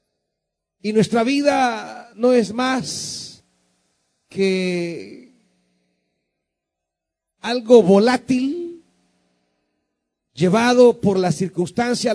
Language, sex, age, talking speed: Spanish, male, 40-59, 65 wpm